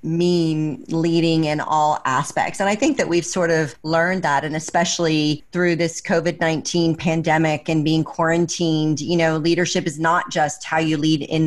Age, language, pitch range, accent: 40-59, English, 155-180 Hz, American